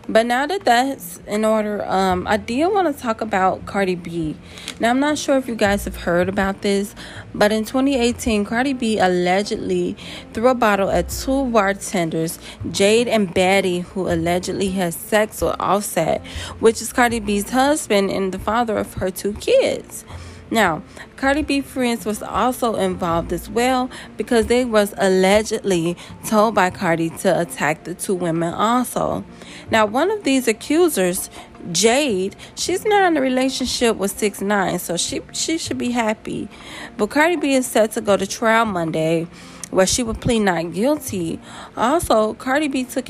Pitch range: 185-245 Hz